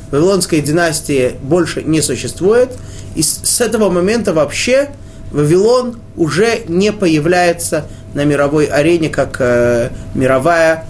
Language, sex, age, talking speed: Russian, male, 20-39, 105 wpm